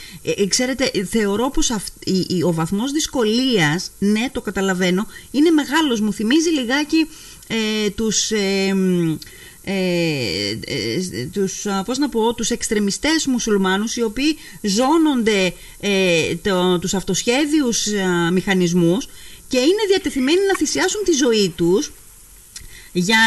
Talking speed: 110 wpm